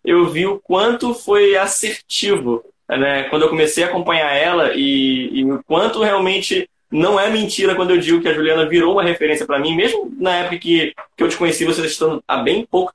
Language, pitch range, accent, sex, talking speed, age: Portuguese, 150-200 Hz, Brazilian, male, 210 wpm, 20-39